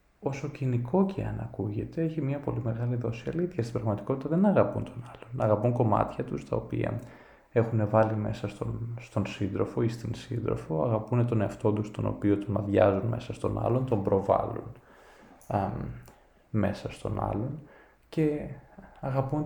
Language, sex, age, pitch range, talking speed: Greek, male, 20-39, 105-130 Hz, 155 wpm